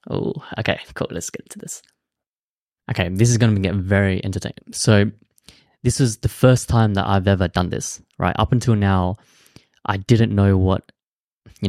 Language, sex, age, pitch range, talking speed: English, male, 20-39, 95-115 Hz, 180 wpm